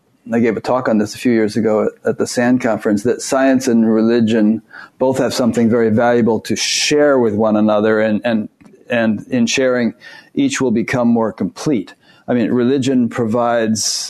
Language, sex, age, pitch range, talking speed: English, male, 40-59, 110-125 Hz, 180 wpm